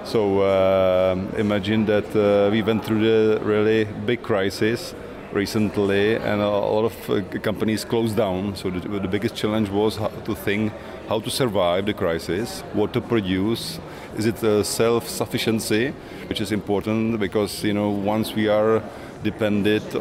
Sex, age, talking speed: male, 30-49, 155 wpm